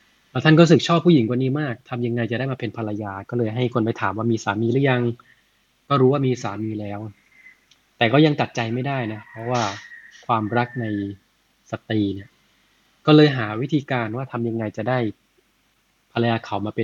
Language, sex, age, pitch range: Thai, male, 20-39, 105-130 Hz